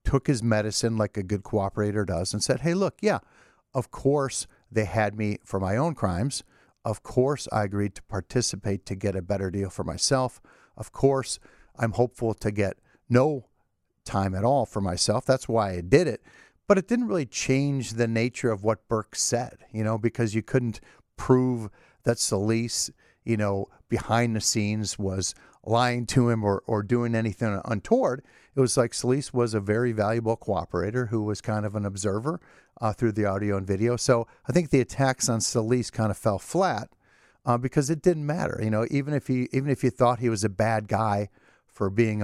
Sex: male